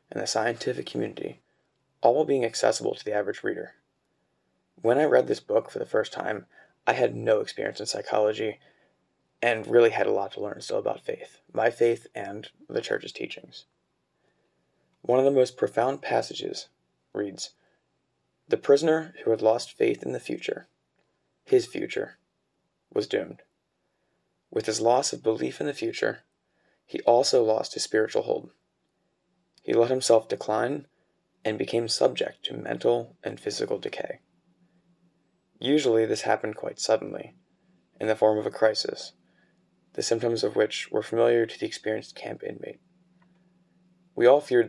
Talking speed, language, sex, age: 150 wpm, English, male, 20-39